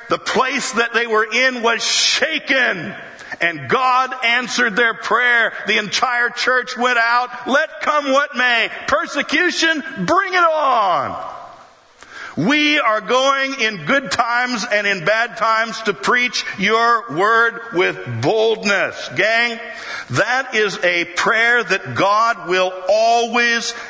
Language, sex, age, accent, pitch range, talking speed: English, male, 50-69, American, 185-250 Hz, 130 wpm